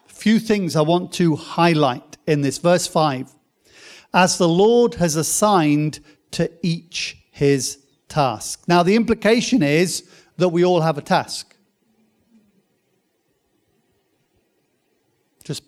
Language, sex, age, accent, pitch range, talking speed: English, male, 50-69, British, 160-205 Hz, 115 wpm